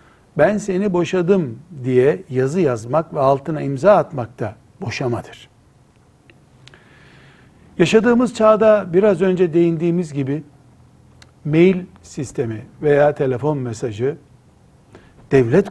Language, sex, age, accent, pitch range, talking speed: Turkish, male, 60-79, native, 125-180 Hz, 90 wpm